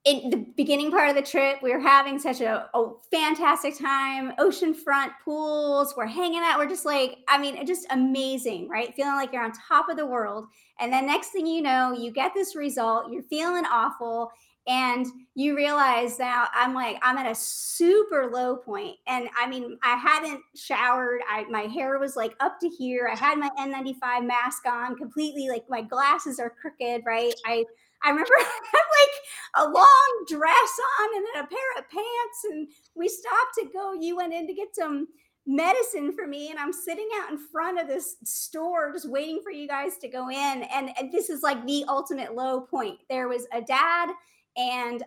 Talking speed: 200 wpm